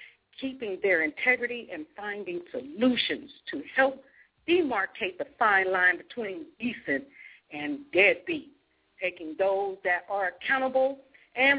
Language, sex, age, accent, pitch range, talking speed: English, female, 50-69, American, 180-280 Hz, 115 wpm